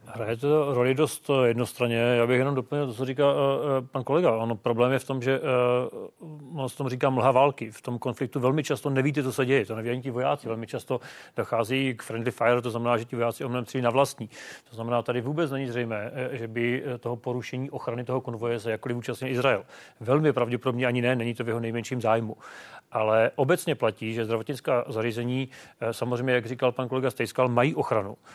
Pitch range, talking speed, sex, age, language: 120-140 Hz, 205 wpm, male, 40-59, Czech